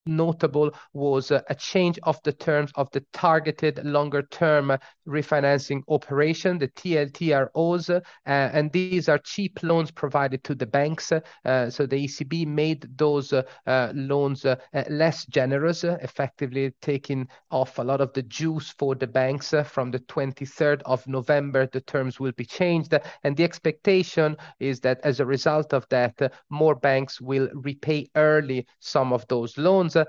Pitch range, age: 135-160 Hz, 30-49